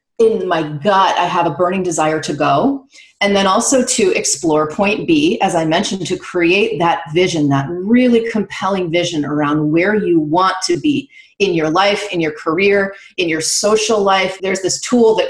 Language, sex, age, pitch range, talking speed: English, female, 30-49, 170-215 Hz, 190 wpm